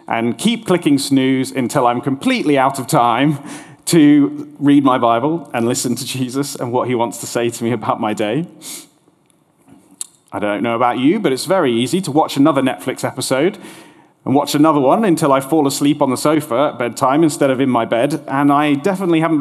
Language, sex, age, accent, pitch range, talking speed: English, male, 30-49, British, 120-155 Hz, 200 wpm